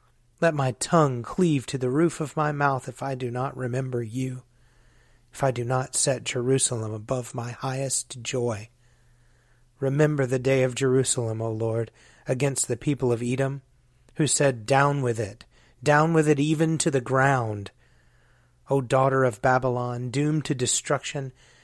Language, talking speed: English, 160 wpm